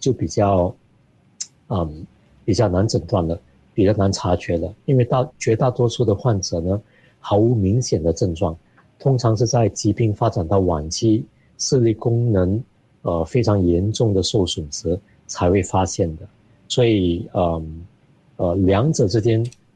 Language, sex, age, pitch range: Chinese, male, 50-69, 90-115 Hz